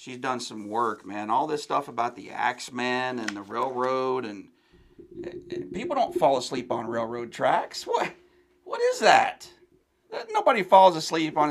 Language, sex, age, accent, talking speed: English, male, 40-59, American, 160 wpm